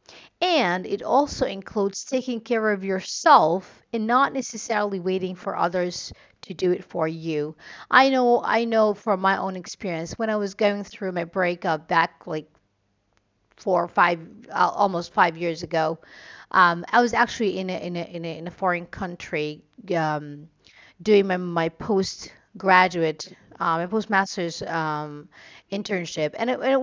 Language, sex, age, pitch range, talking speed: English, female, 40-59, 170-215 Hz, 160 wpm